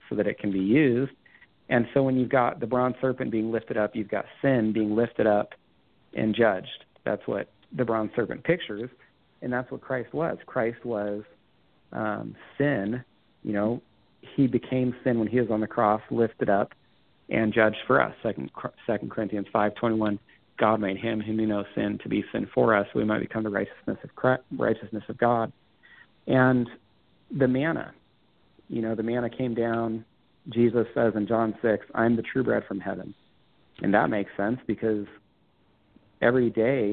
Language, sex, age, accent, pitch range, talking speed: English, male, 40-59, American, 105-125 Hz, 185 wpm